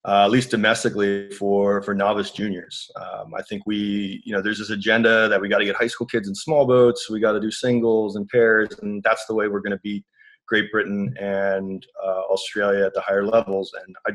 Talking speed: 230 wpm